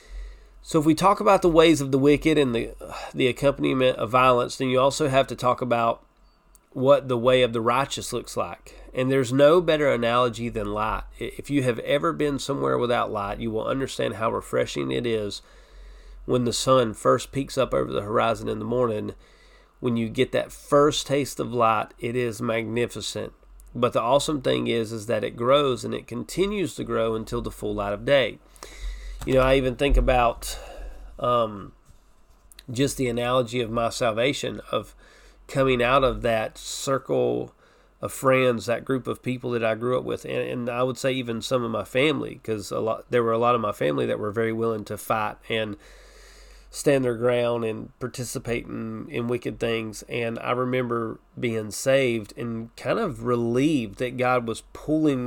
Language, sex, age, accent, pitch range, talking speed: English, male, 30-49, American, 115-135 Hz, 190 wpm